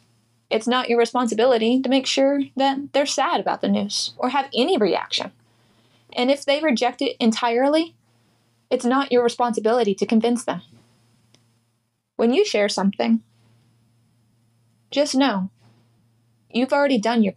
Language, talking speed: English, 140 wpm